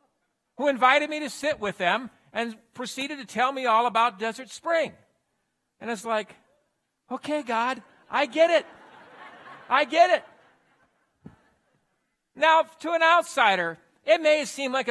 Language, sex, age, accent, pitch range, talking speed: English, male, 50-69, American, 190-265 Hz, 140 wpm